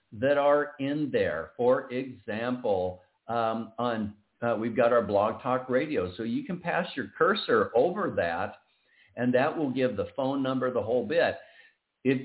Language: English